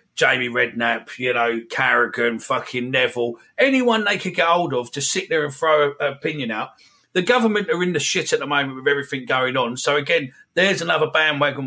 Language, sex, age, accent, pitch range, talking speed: English, male, 40-59, British, 135-185 Hz, 200 wpm